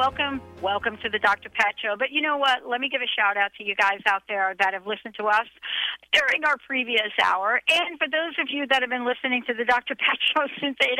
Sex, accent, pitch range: female, American, 200-255 Hz